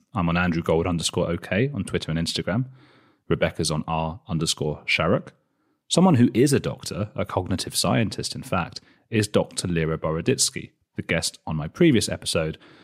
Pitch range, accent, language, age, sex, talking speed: 80-110 Hz, British, English, 30-49, male, 165 wpm